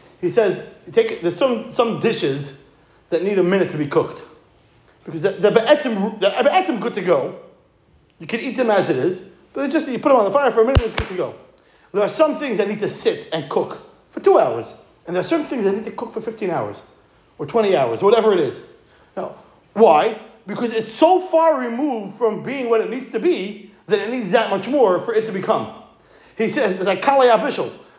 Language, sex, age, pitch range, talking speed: English, male, 40-59, 205-300 Hz, 230 wpm